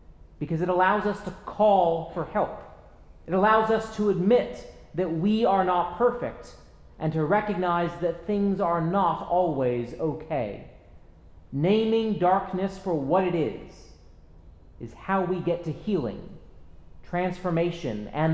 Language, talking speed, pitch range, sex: English, 135 wpm, 120-185 Hz, male